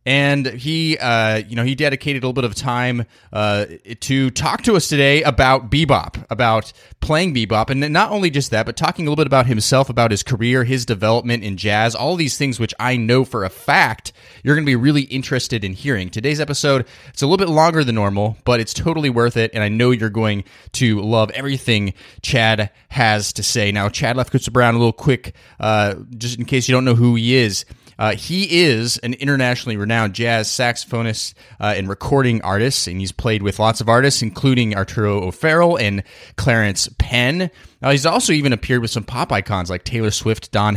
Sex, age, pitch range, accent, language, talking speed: male, 20-39, 105-135 Hz, American, English, 210 wpm